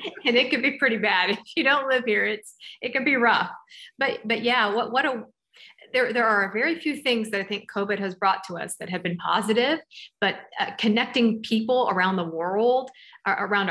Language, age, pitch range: English, 40-59, 195-250 Hz